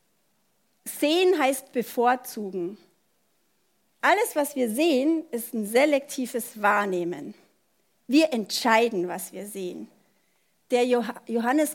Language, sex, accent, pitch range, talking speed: German, female, German, 230-315 Hz, 90 wpm